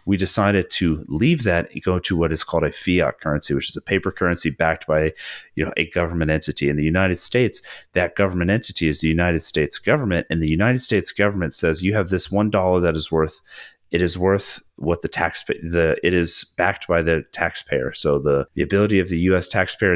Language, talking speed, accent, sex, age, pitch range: English, 225 wpm, American, male, 30-49, 80-100 Hz